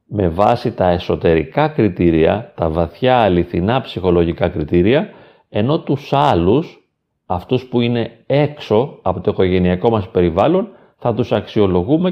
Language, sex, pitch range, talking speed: Greek, male, 95-150 Hz, 125 wpm